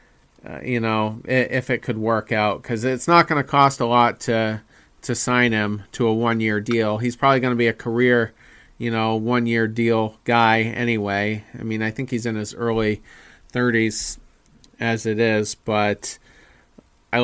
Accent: American